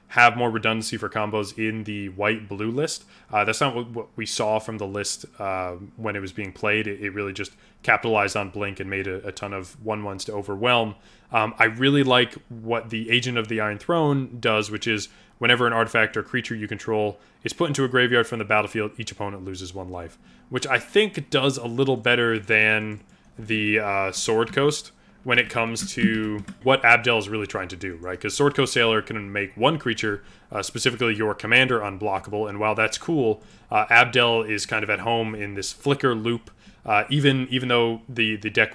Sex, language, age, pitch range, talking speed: male, English, 20-39, 105-120 Hz, 210 wpm